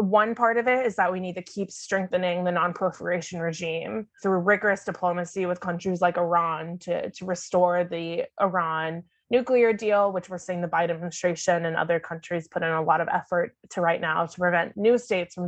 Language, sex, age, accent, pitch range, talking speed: English, female, 20-39, American, 175-195 Hz, 200 wpm